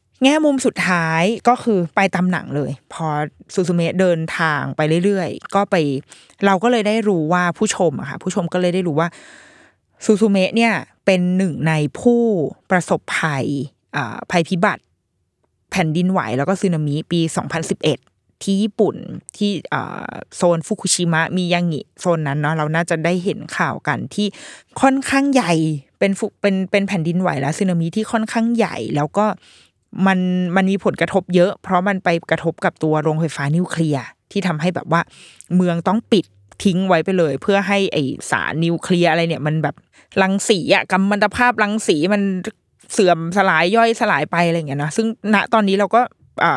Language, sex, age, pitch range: Thai, female, 20-39, 160-205 Hz